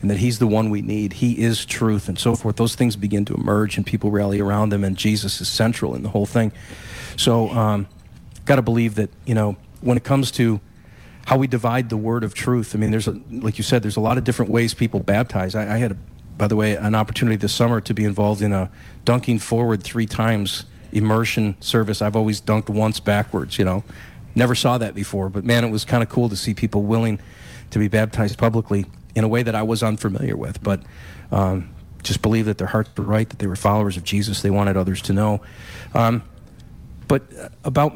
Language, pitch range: English, 105-120 Hz